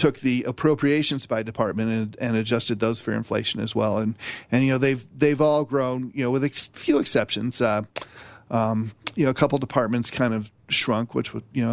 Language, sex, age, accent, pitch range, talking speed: English, male, 40-59, American, 115-140 Hz, 210 wpm